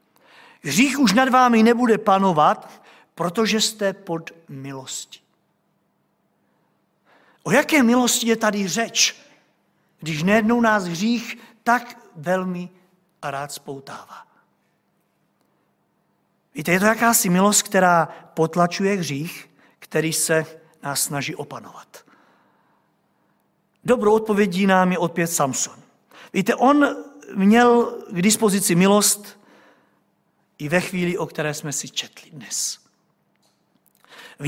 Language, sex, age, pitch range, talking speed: Czech, male, 50-69, 165-220 Hz, 105 wpm